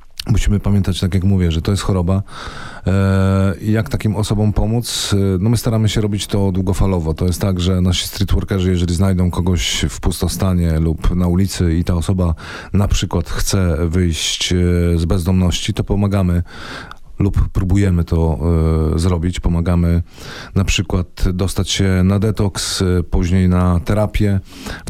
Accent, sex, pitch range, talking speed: native, male, 90-100 Hz, 155 wpm